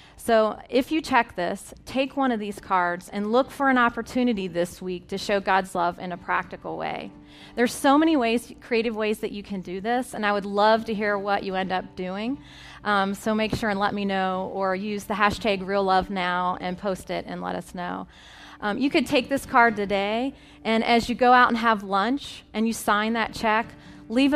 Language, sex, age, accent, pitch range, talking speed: English, female, 30-49, American, 195-245 Hz, 215 wpm